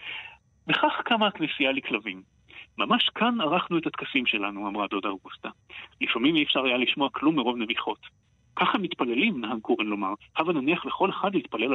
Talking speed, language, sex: 160 wpm, Hebrew, male